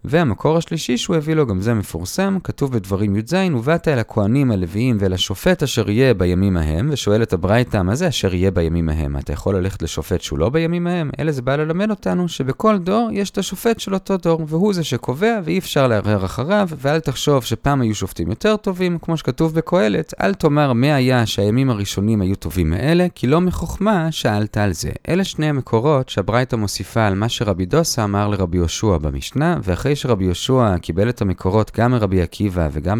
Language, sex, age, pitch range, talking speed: Hebrew, male, 30-49, 100-155 Hz, 170 wpm